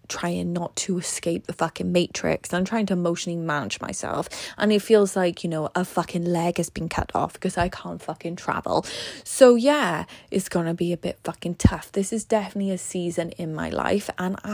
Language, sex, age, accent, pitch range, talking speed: English, female, 20-39, British, 170-200 Hz, 200 wpm